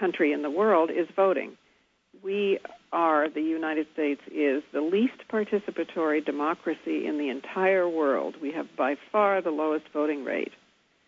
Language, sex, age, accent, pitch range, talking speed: English, female, 60-79, American, 140-190 Hz, 150 wpm